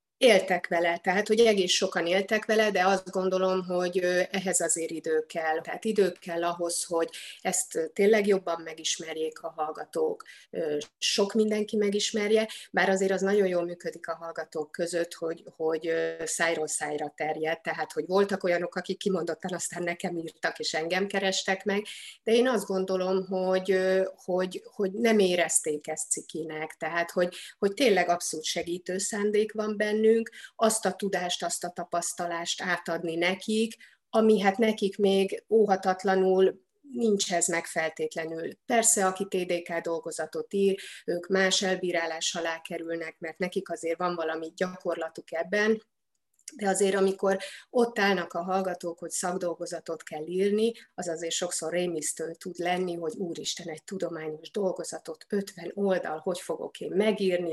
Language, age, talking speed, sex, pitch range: Hungarian, 30-49, 145 wpm, female, 165-195 Hz